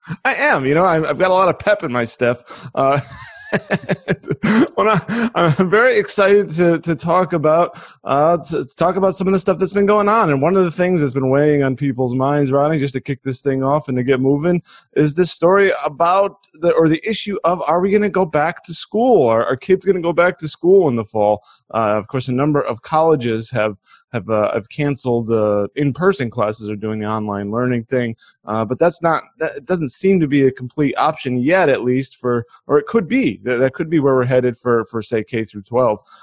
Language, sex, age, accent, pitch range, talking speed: English, male, 20-39, American, 125-170 Hz, 230 wpm